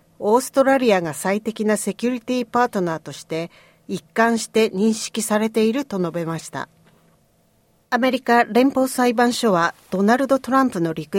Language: Japanese